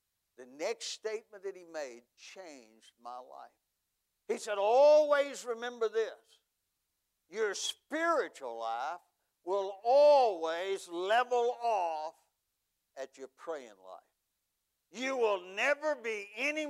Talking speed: 110 wpm